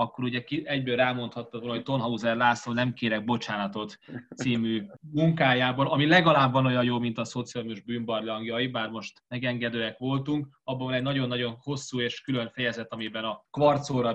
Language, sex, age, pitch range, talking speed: Hungarian, male, 20-39, 120-145 Hz, 155 wpm